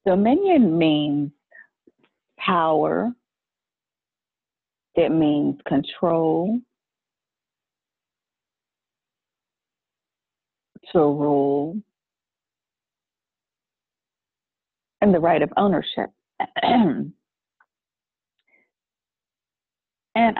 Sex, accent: female, American